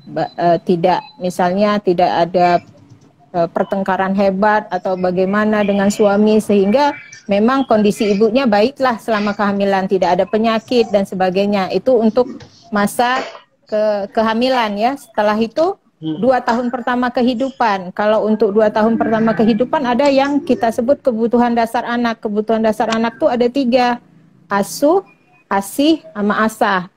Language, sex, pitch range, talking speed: Indonesian, female, 205-265 Hz, 135 wpm